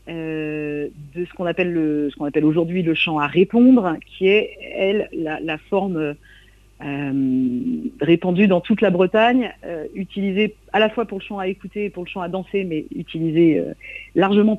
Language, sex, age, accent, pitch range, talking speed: French, female, 50-69, French, 175-225 Hz, 190 wpm